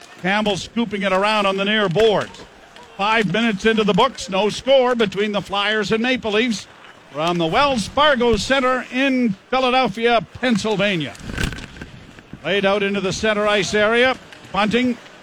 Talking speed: 150 wpm